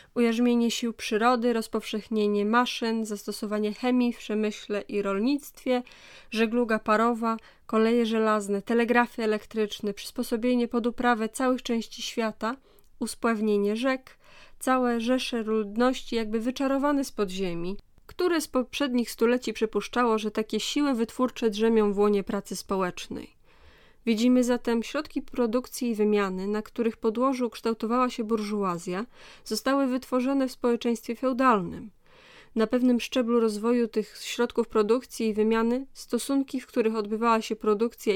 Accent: Polish